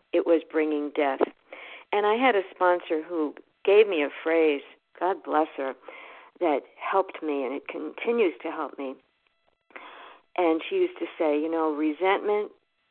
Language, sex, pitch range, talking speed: English, female, 150-185 Hz, 160 wpm